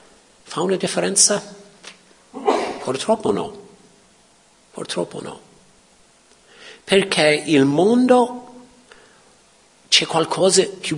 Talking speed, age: 70 wpm, 50-69